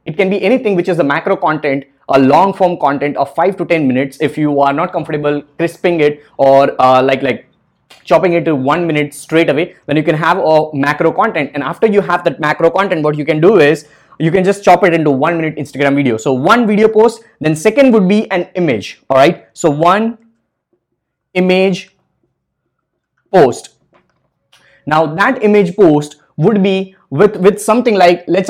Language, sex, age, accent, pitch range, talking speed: English, male, 20-39, Indian, 150-195 Hz, 195 wpm